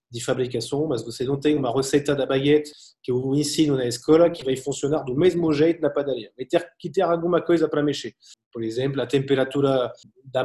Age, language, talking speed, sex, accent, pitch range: 30-49, Portuguese, 200 wpm, male, French, 130-155 Hz